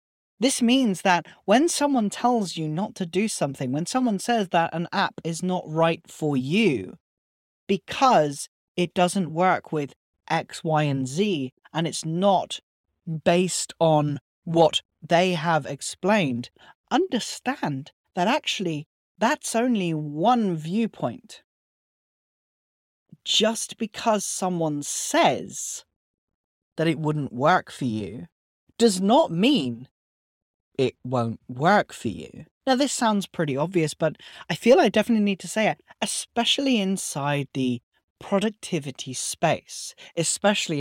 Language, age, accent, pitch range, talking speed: English, 40-59, British, 145-210 Hz, 125 wpm